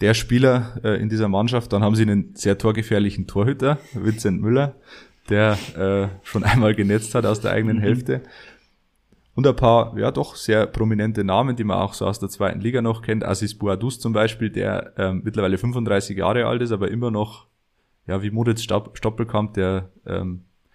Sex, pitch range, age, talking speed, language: male, 100-115 Hz, 20-39, 185 wpm, German